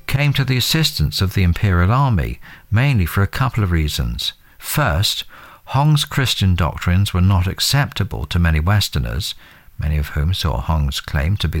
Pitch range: 80-115 Hz